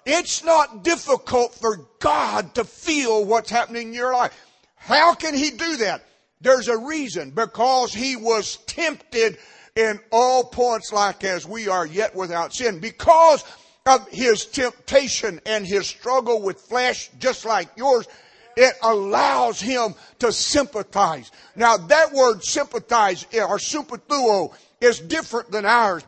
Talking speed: 140 wpm